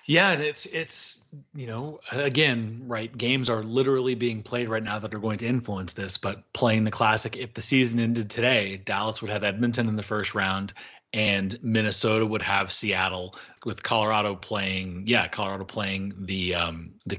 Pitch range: 105-120 Hz